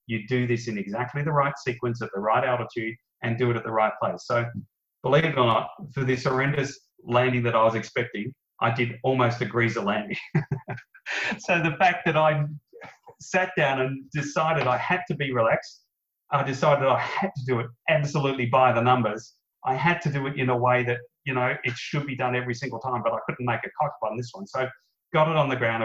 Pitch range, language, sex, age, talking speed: 115-145 Hz, English, male, 30-49, 225 wpm